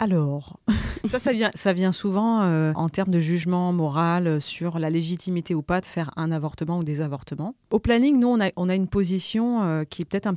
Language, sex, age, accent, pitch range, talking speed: French, female, 30-49, French, 150-180 Hz, 215 wpm